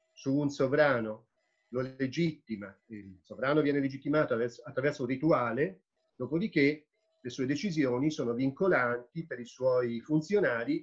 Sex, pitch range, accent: male, 120-160 Hz, native